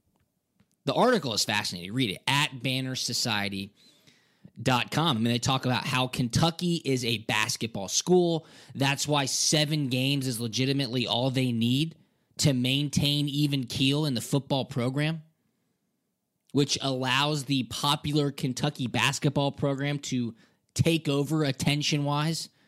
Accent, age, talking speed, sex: American, 20-39, 125 wpm, male